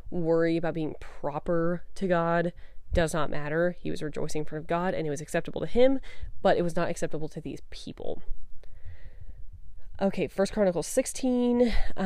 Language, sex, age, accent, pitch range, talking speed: English, female, 20-39, American, 150-185 Hz, 160 wpm